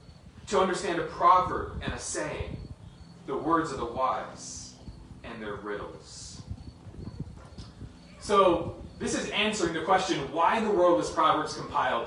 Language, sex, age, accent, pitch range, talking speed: English, male, 30-49, American, 135-220 Hz, 140 wpm